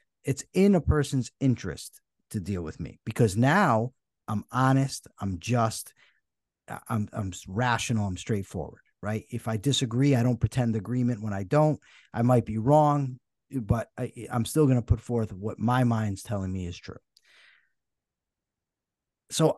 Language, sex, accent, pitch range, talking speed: English, male, American, 105-140 Hz, 155 wpm